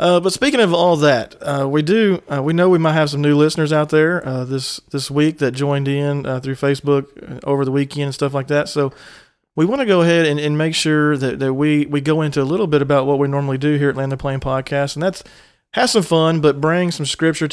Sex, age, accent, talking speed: male, 40-59, American, 260 wpm